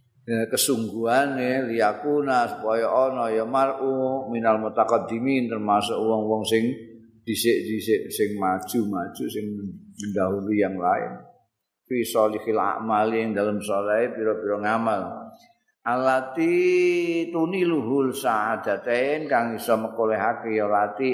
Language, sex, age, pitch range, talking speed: Indonesian, male, 50-69, 105-130 Hz, 110 wpm